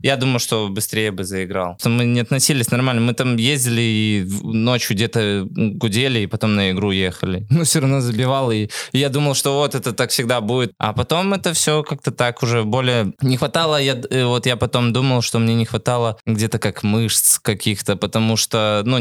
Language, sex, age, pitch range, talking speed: Russian, male, 20-39, 110-135 Hz, 200 wpm